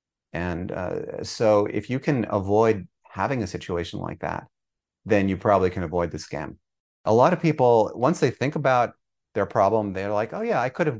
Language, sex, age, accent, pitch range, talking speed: English, male, 30-49, American, 95-115 Hz, 195 wpm